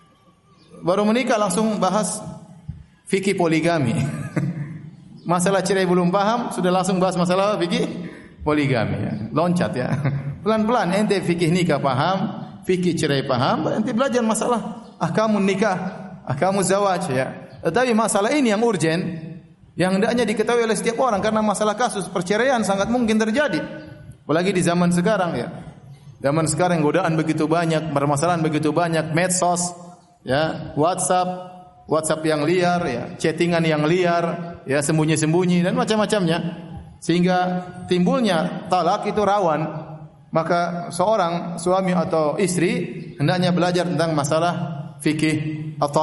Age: 30-49